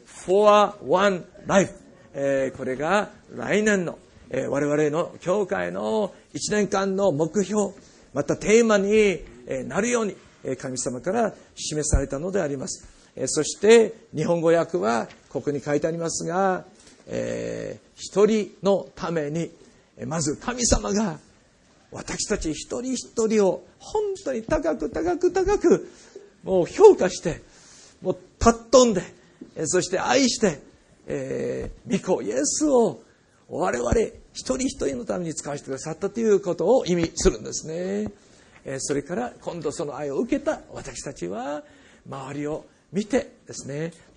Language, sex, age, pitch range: Japanese, male, 50-69, 155-230 Hz